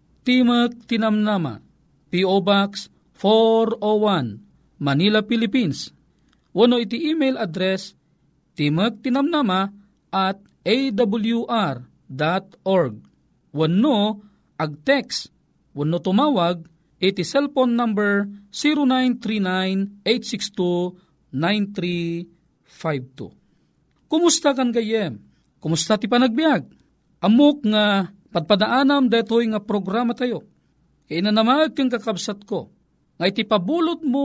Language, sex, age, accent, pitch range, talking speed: Filipino, male, 40-59, native, 175-240 Hz, 80 wpm